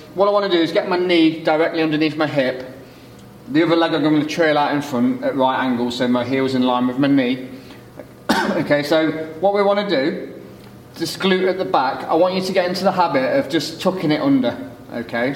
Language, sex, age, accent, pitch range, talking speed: English, male, 30-49, British, 135-165 Hz, 235 wpm